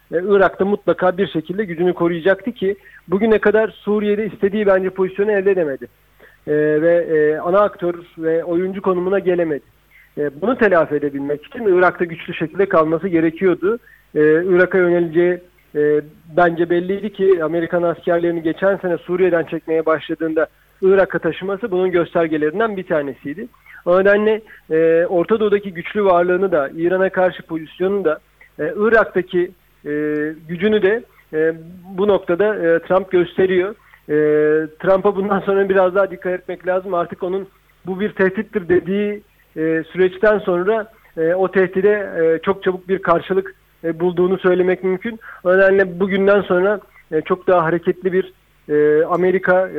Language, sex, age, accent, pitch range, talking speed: Turkish, male, 40-59, native, 165-195 Hz, 130 wpm